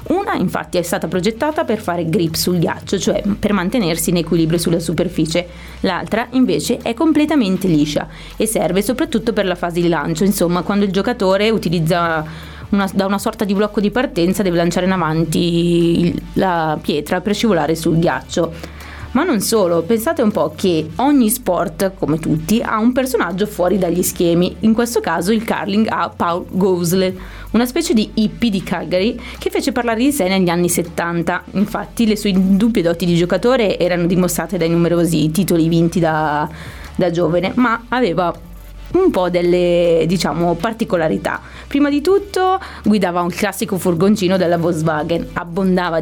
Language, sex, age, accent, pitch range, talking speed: Italian, female, 20-39, native, 175-225 Hz, 160 wpm